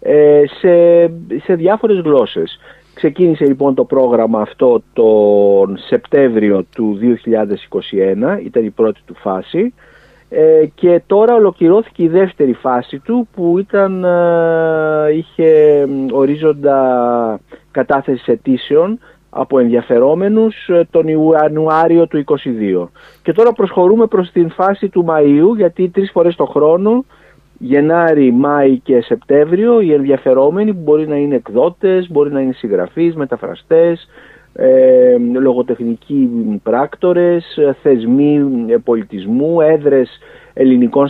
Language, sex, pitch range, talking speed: Greek, male, 130-180 Hz, 105 wpm